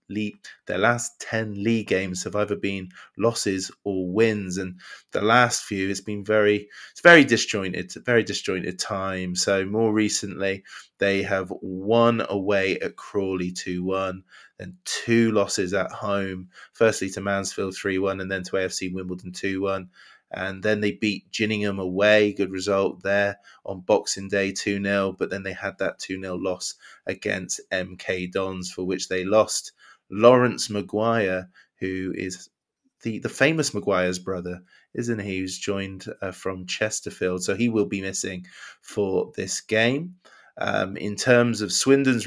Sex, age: male, 20-39